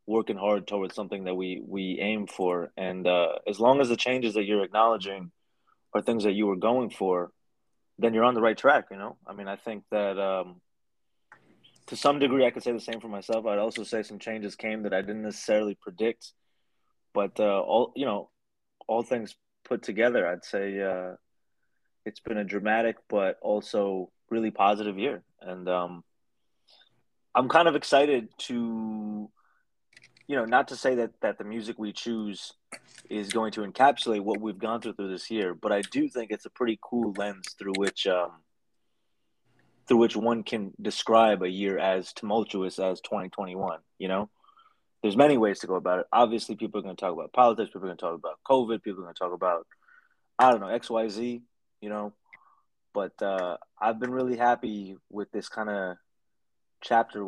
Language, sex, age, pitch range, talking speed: English, male, 20-39, 95-115 Hz, 190 wpm